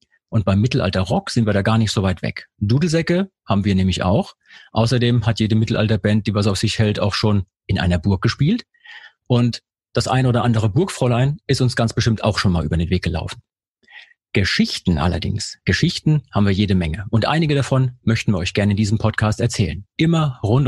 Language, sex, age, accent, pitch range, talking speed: German, male, 40-59, German, 100-125 Hz, 200 wpm